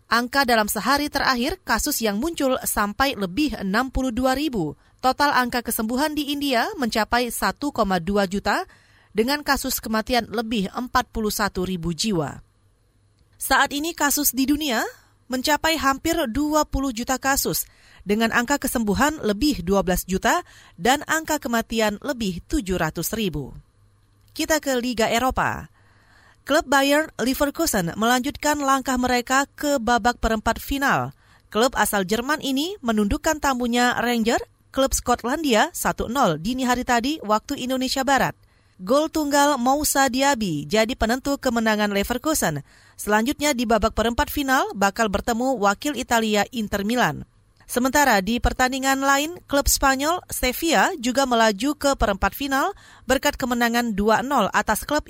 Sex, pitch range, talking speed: female, 210-275 Hz, 125 wpm